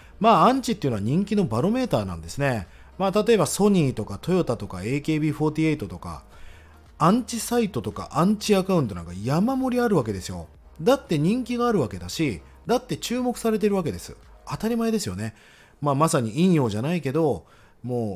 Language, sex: Japanese, male